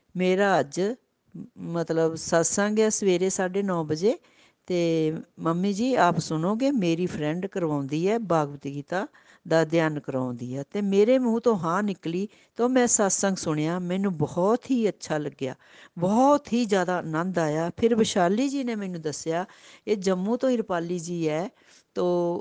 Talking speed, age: 150 wpm, 60-79